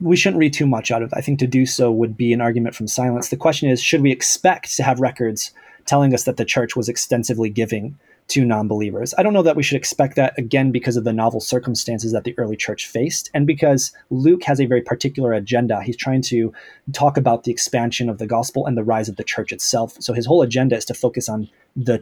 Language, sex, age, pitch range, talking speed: English, male, 30-49, 120-160 Hz, 250 wpm